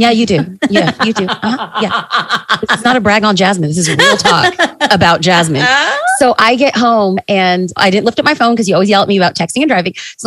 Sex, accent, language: female, American, English